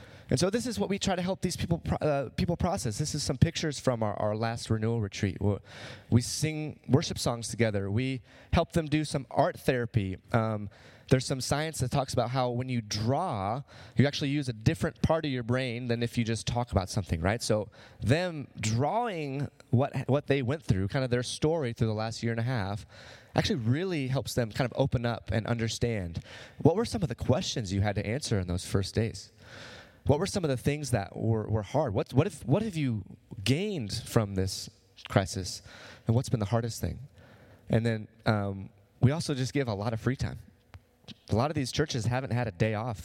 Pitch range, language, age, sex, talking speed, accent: 110-135 Hz, English, 20-39, male, 215 wpm, American